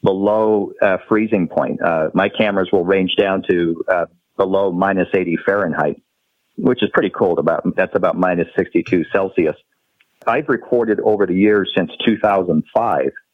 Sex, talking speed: male, 160 wpm